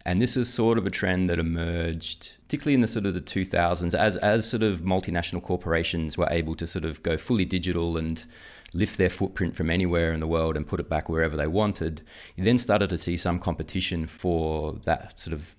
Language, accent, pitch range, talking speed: English, Australian, 75-90 Hz, 220 wpm